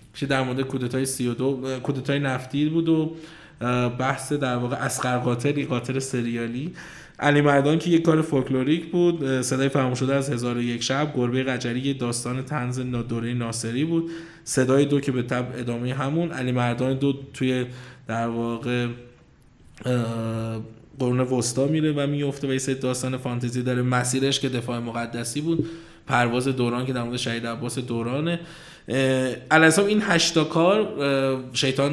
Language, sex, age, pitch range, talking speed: Persian, male, 20-39, 125-160 Hz, 140 wpm